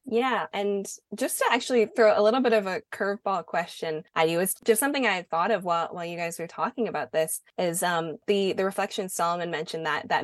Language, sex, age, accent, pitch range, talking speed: English, female, 20-39, American, 160-195 Hz, 230 wpm